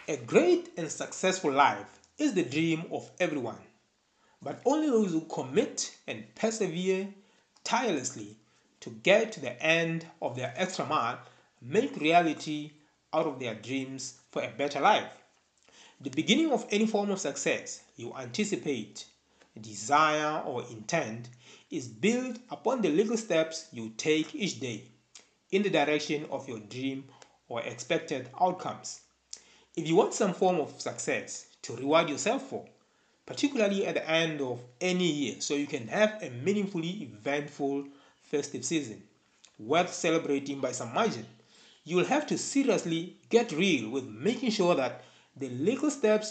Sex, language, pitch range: male, English, 140-205 Hz